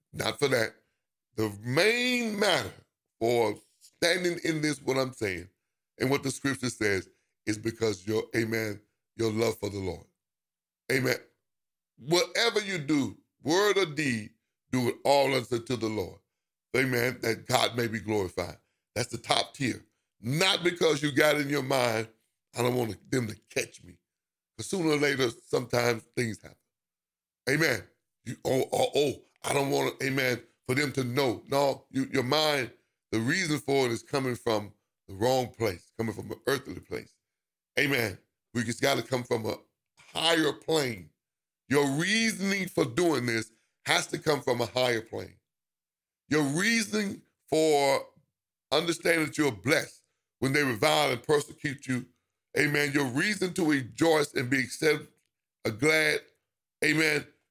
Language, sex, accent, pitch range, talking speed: English, male, American, 115-150 Hz, 155 wpm